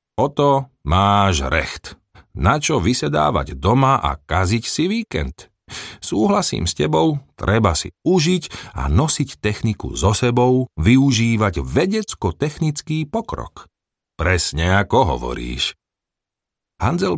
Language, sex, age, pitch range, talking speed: Slovak, male, 40-59, 80-120 Hz, 100 wpm